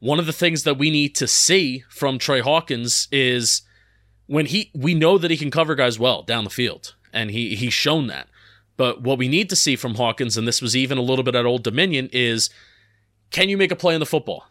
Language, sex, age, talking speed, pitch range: English, male, 30-49, 250 wpm, 120-155 Hz